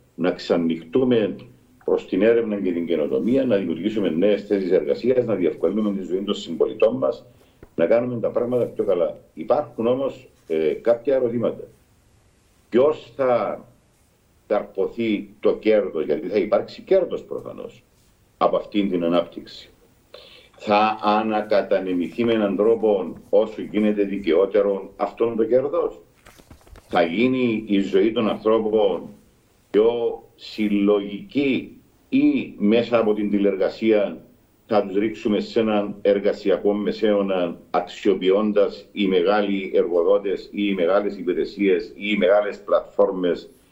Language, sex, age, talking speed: Greek, male, 50-69, 140 wpm